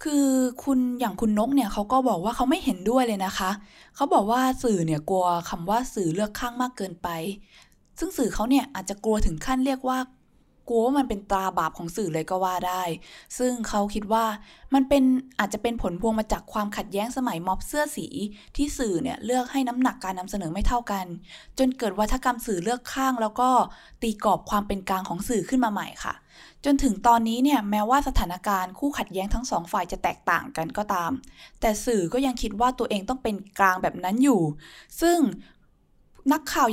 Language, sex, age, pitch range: Thai, female, 20-39, 190-255 Hz